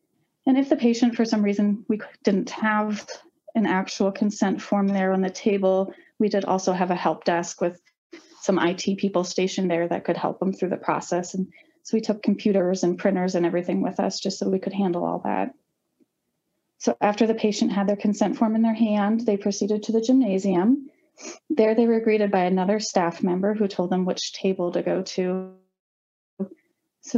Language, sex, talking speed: English, female, 195 wpm